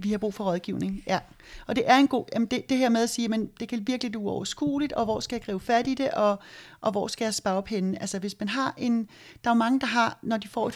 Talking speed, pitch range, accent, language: 285 wpm, 195-230 Hz, native, Danish